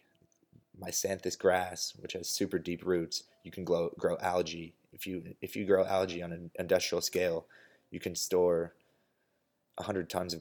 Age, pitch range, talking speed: 20-39, 85-95 Hz, 165 wpm